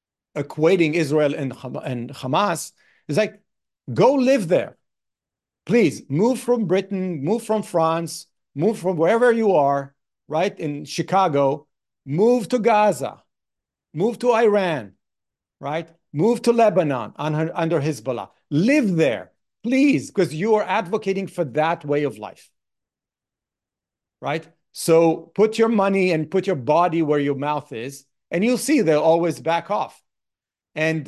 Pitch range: 140-190 Hz